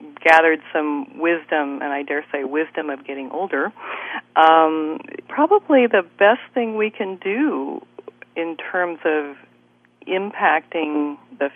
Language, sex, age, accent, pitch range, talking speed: English, female, 50-69, American, 145-185 Hz, 125 wpm